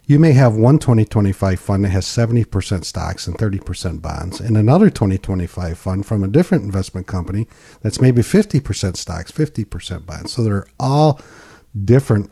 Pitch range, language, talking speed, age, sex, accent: 100-130 Hz, English, 155 wpm, 50-69, male, American